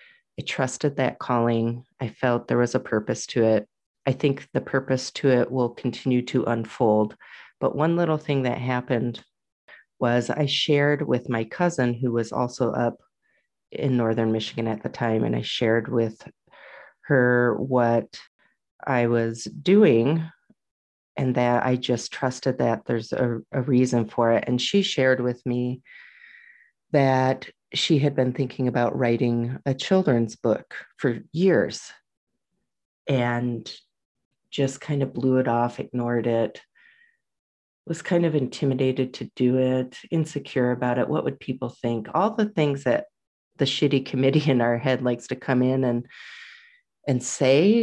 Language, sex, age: English, female, 30-49